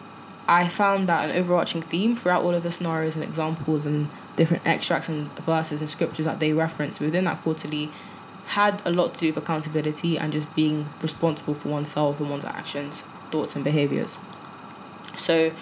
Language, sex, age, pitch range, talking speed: English, female, 10-29, 155-180 Hz, 175 wpm